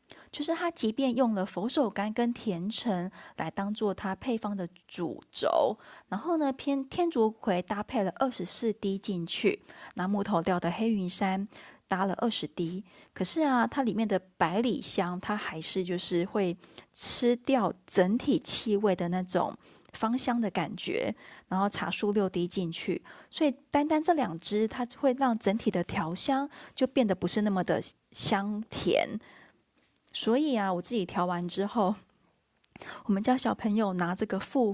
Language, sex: Chinese, female